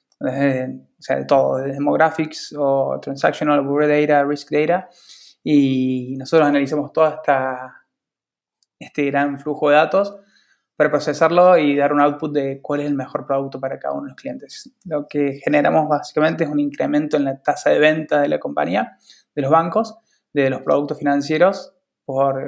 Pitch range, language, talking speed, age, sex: 140-165 Hz, Spanish, 170 wpm, 20-39, male